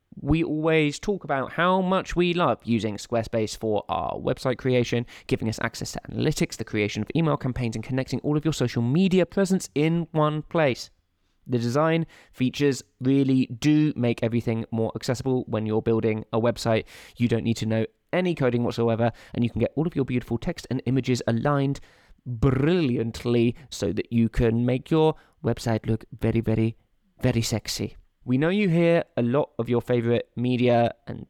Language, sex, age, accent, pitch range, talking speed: English, male, 20-39, British, 110-140 Hz, 180 wpm